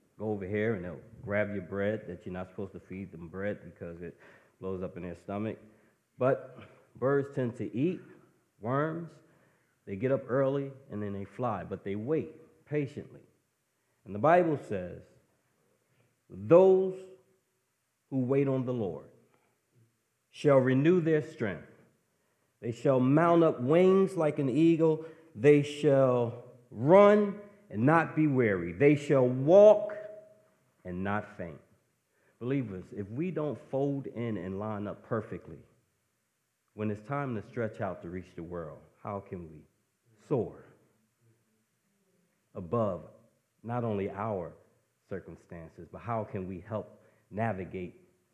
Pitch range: 100-145 Hz